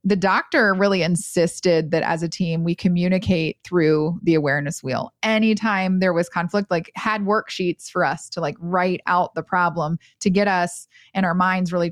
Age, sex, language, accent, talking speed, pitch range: 30-49, female, English, American, 180 wpm, 175-210 Hz